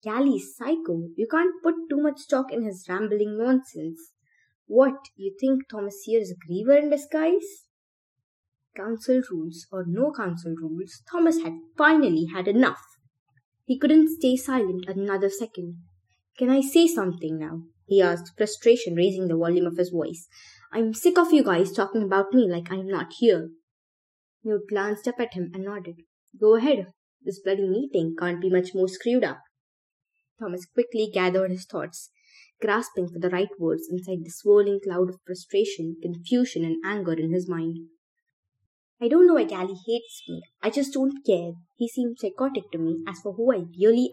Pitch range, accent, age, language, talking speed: 175-255 Hz, Indian, 20-39, English, 175 wpm